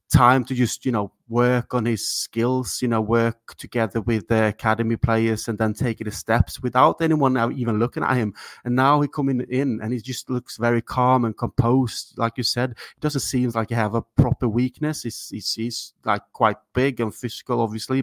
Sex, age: male, 30-49